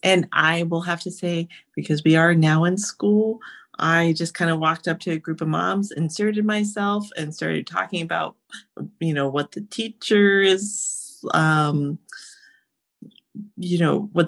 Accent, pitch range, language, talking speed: American, 155-195 Hz, English, 160 wpm